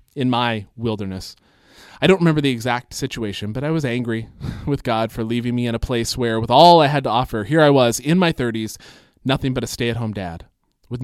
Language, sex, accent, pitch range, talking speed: English, male, American, 110-145 Hz, 215 wpm